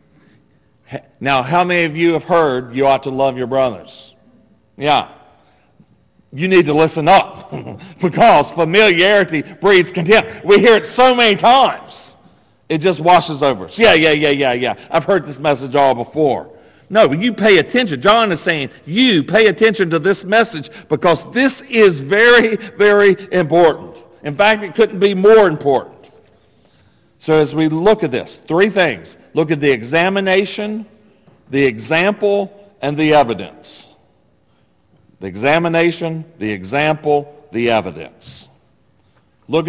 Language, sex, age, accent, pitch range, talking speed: English, male, 50-69, American, 125-195 Hz, 145 wpm